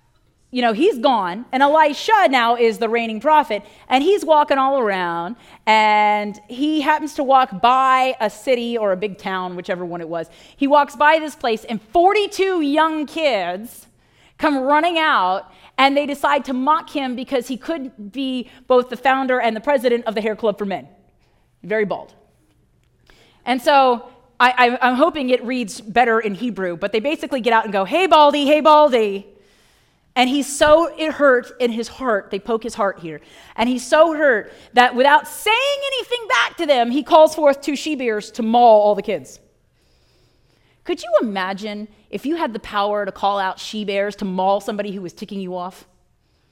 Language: English